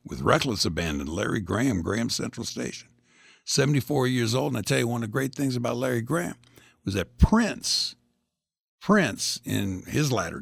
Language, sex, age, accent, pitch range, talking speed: English, male, 60-79, American, 85-125 Hz, 175 wpm